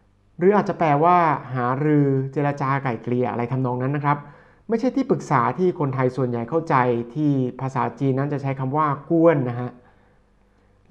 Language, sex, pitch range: Thai, male, 125-150 Hz